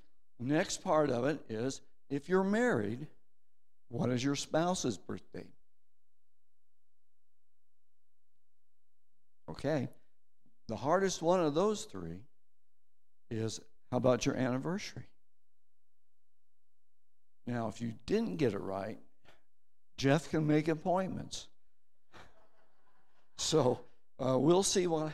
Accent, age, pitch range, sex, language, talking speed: American, 60-79, 130-165 Hz, male, English, 100 wpm